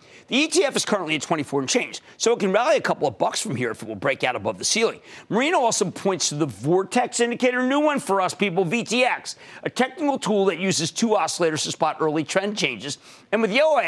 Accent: American